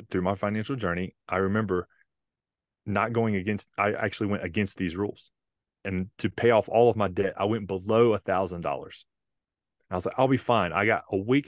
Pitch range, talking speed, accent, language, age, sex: 95-120 Hz, 205 wpm, American, English, 30-49, male